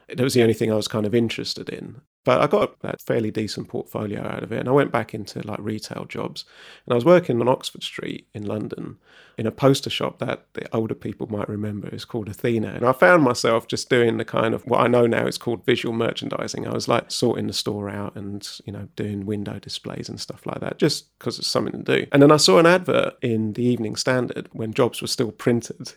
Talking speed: 245 wpm